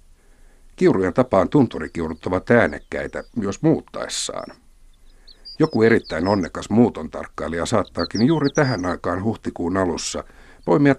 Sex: male